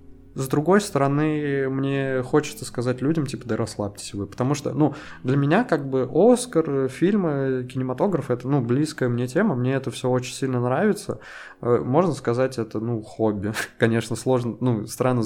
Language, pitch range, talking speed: Russian, 115-140 Hz, 160 wpm